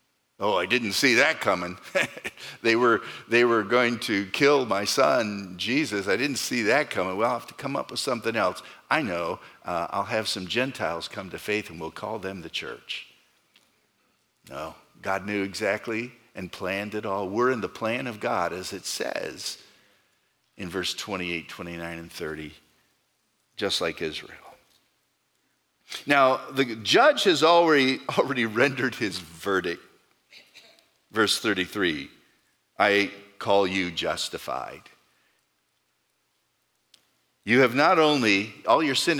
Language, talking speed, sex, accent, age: English, 145 wpm, male, American, 50-69